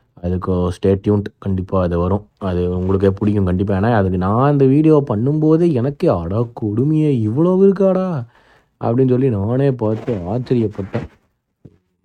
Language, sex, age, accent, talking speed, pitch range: Tamil, male, 20-39, native, 130 wpm, 100-130 Hz